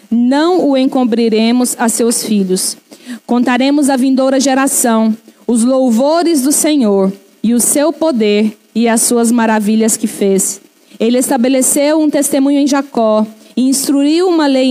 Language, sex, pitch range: Portuguese, female, 225-290 Hz